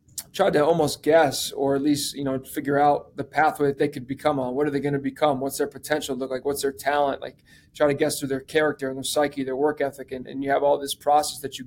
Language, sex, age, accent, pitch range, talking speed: English, male, 20-39, American, 135-150 Hz, 280 wpm